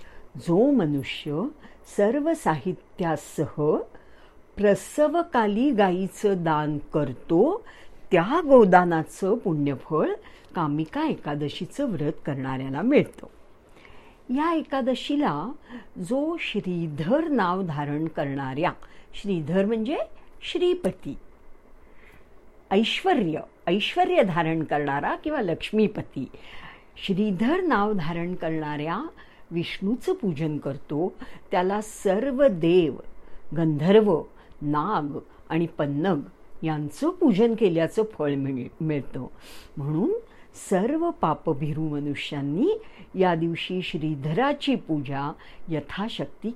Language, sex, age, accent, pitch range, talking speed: English, female, 60-79, Indian, 155-250 Hz, 80 wpm